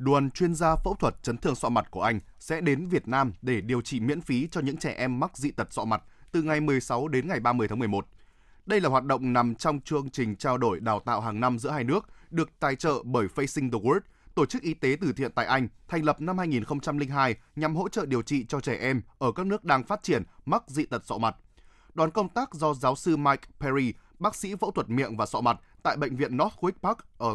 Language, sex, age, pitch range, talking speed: Vietnamese, male, 20-39, 125-165 Hz, 250 wpm